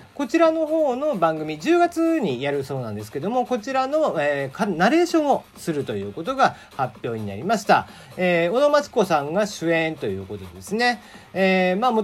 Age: 40-59